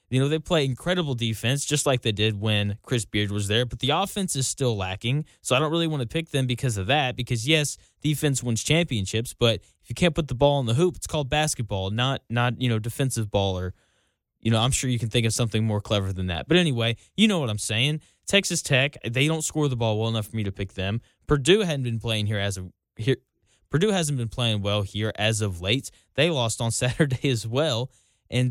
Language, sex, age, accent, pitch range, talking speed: English, male, 10-29, American, 110-145 Hz, 240 wpm